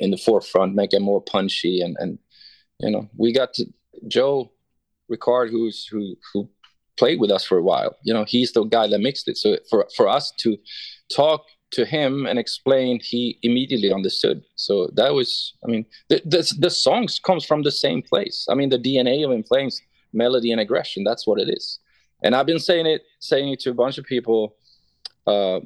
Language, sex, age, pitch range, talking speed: English, male, 20-39, 110-140 Hz, 200 wpm